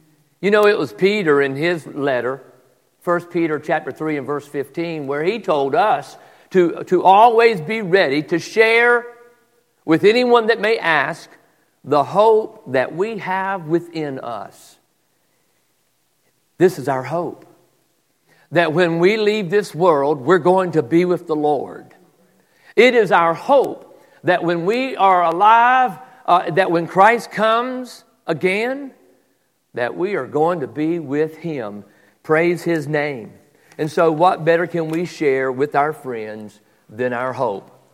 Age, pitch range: 50-69, 145-190 Hz